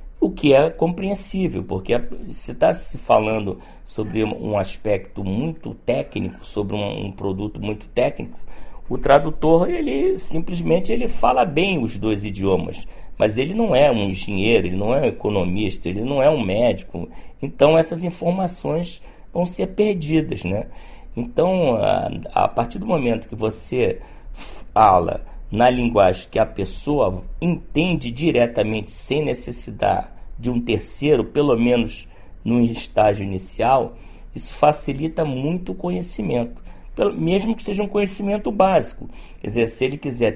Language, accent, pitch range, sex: Chinese, Brazilian, 105-170 Hz, male